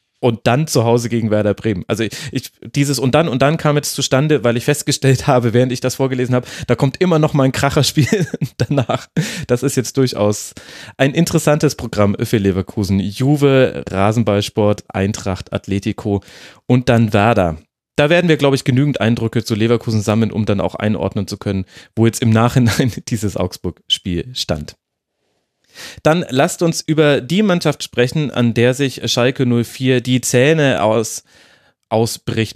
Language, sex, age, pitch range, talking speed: German, male, 30-49, 110-140 Hz, 160 wpm